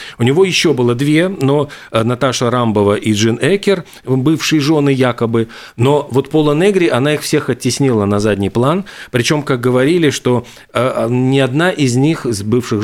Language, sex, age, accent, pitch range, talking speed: Russian, male, 40-59, native, 110-145 Hz, 165 wpm